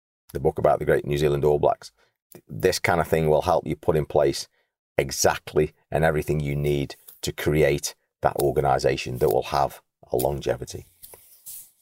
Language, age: English, 40-59